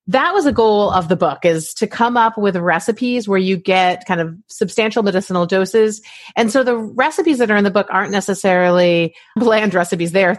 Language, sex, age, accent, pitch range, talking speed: English, female, 30-49, American, 175-215 Hz, 210 wpm